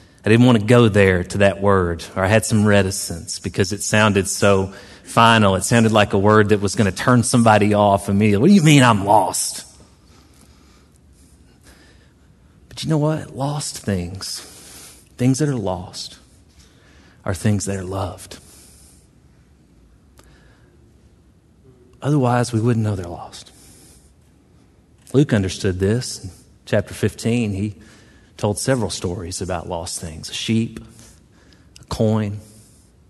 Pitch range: 90-110 Hz